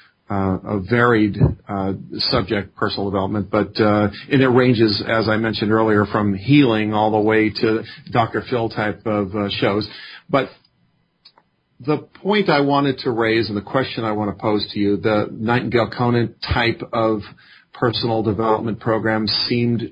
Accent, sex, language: American, male, English